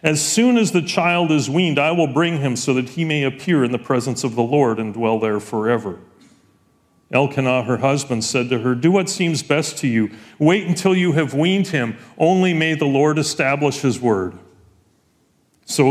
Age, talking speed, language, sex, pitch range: 40-59, 195 wpm, English, male, 120-160 Hz